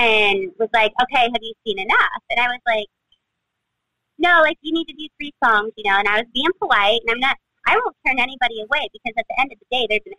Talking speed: 260 wpm